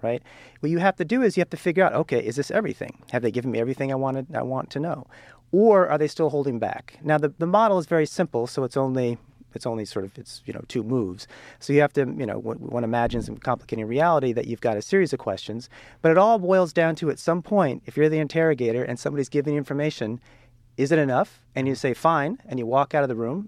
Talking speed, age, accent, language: 265 wpm, 40-59, American, English